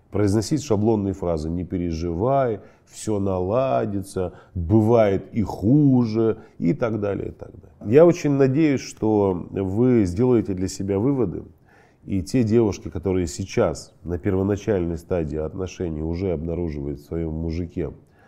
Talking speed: 120 wpm